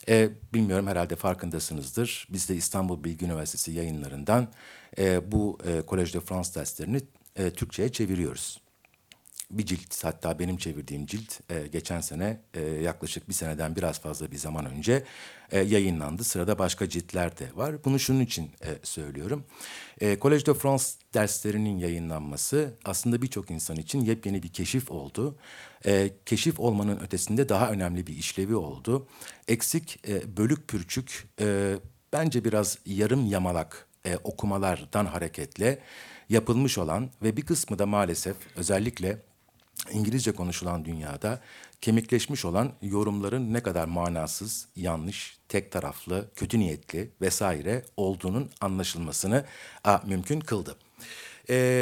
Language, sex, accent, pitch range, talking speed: Turkish, male, native, 90-120 Hz, 115 wpm